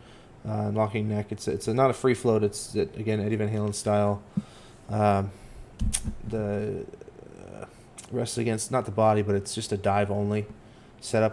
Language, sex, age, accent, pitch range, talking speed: English, male, 20-39, American, 105-115 Hz, 170 wpm